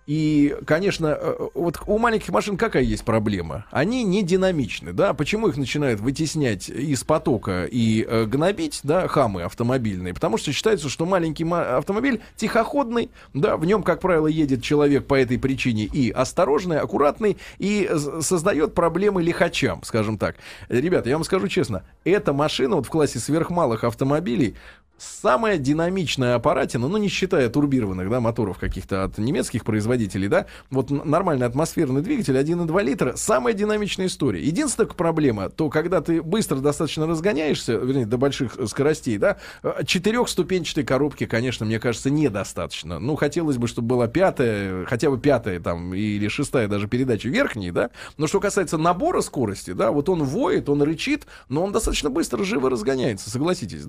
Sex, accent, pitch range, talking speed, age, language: male, native, 120-180 Hz, 155 wpm, 20-39, Russian